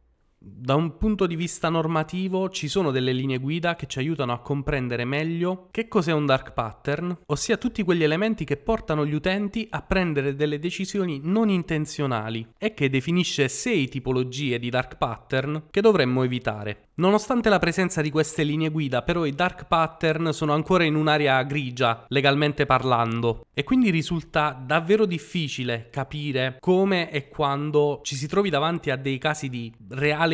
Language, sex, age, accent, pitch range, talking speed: Italian, male, 20-39, native, 130-175 Hz, 165 wpm